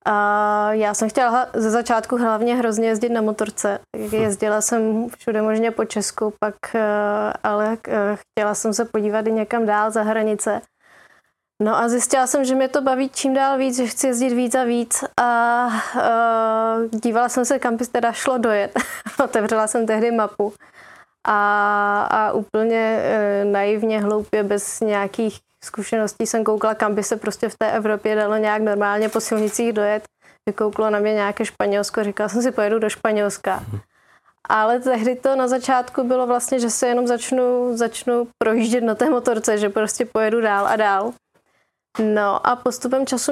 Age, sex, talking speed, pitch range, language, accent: 20-39, female, 165 wpm, 210-245 Hz, Czech, native